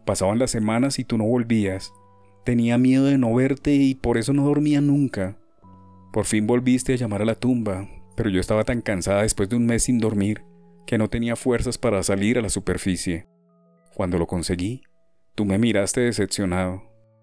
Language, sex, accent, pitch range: Spanish, male, Colombian, 100-125 Hz